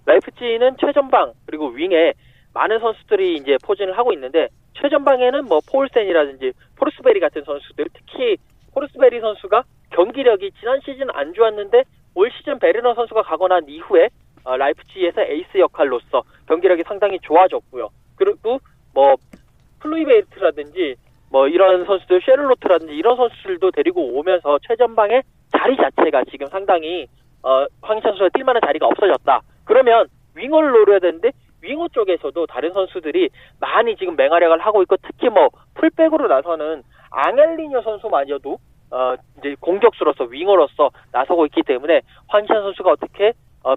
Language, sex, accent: Korean, male, native